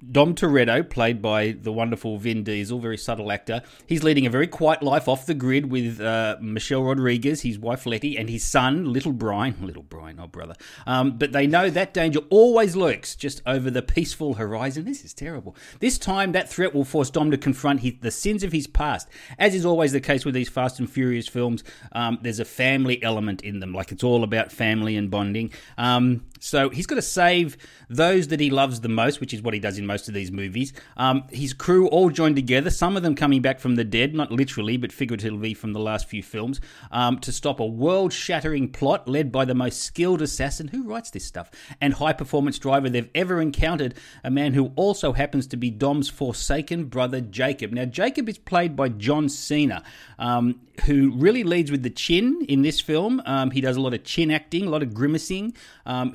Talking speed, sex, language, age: 215 wpm, male, English, 30-49